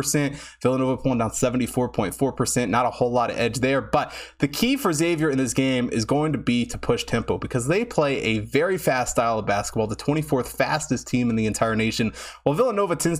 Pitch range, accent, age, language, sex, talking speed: 115-145 Hz, American, 20-39, English, male, 210 wpm